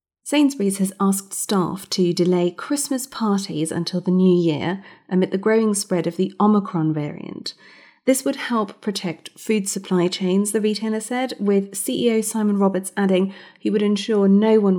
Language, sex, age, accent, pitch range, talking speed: English, female, 30-49, British, 175-220 Hz, 160 wpm